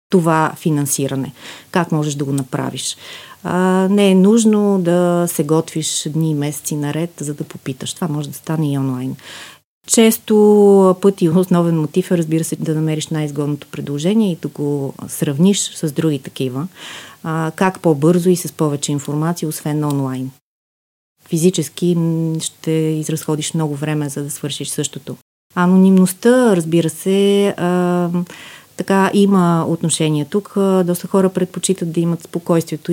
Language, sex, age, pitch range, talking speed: Bulgarian, female, 30-49, 150-190 Hz, 135 wpm